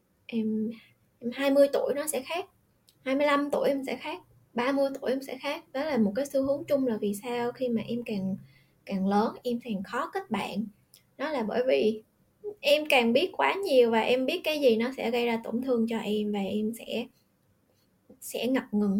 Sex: female